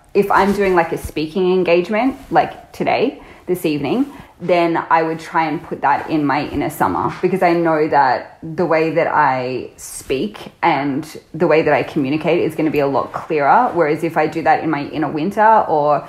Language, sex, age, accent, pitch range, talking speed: English, female, 20-39, Australian, 155-185 Hz, 200 wpm